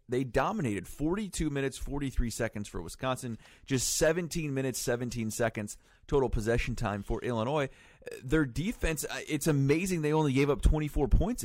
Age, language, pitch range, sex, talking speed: 30-49, English, 110-140 Hz, male, 135 wpm